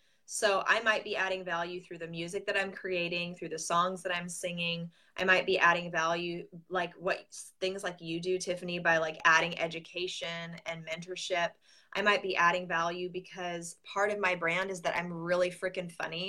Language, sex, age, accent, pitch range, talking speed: English, female, 20-39, American, 170-200 Hz, 190 wpm